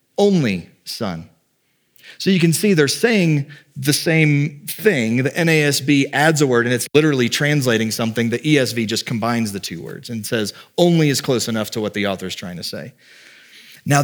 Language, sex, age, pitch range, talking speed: English, male, 30-49, 115-150 Hz, 185 wpm